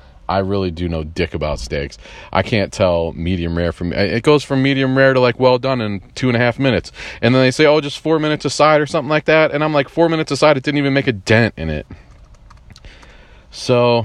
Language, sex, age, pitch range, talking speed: English, male, 30-49, 85-115 Hz, 250 wpm